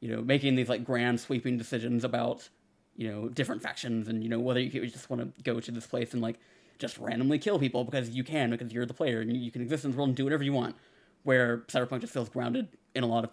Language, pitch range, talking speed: English, 115-130 Hz, 265 wpm